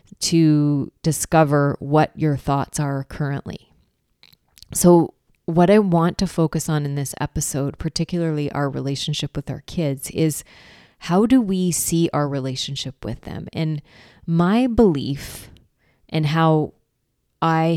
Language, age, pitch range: English, 30-49, 145-165 Hz